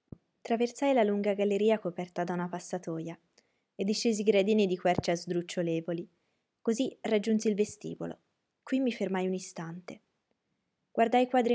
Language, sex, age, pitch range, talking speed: Italian, female, 20-39, 180-220 Hz, 135 wpm